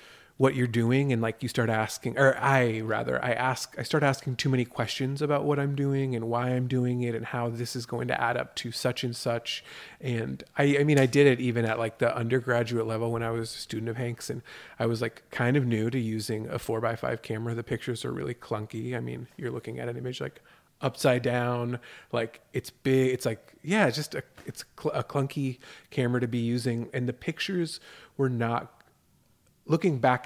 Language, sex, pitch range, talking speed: English, male, 115-135 Hz, 225 wpm